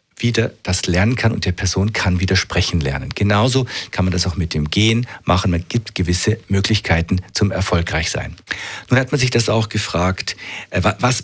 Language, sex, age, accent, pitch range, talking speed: German, male, 50-69, German, 95-120 Hz, 185 wpm